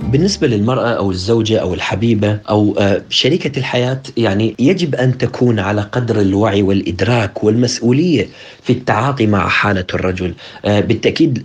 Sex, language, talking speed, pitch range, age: male, Arabic, 125 wpm, 100-135 Hz, 40-59